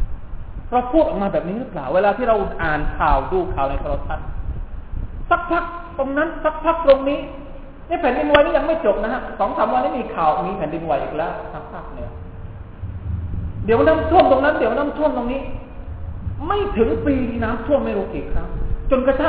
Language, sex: Thai, male